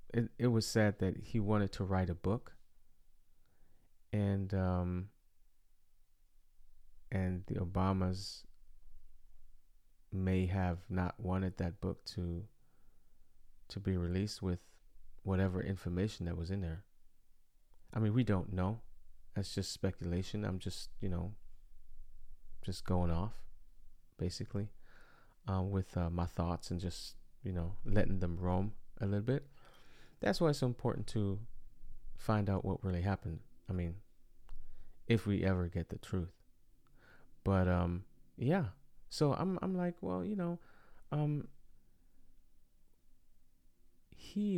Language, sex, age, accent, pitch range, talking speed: English, male, 30-49, American, 85-105 Hz, 130 wpm